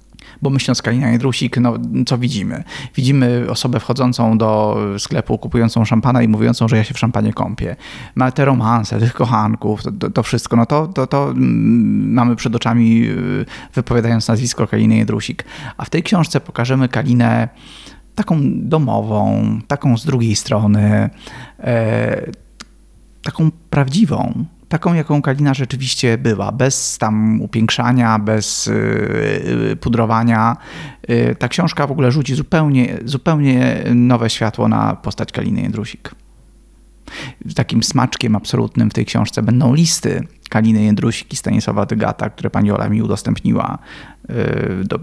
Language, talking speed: Polish, 125 wpm